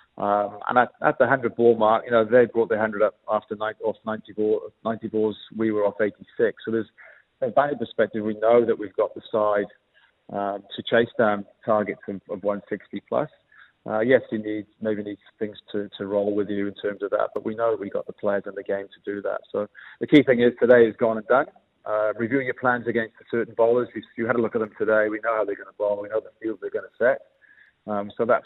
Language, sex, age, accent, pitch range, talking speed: English, male, 30-49, British, 105-115 Hz, 255 wpm